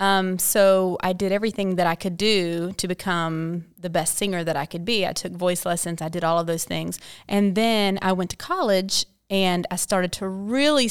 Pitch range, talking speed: 170-200 Hz, 215 wpm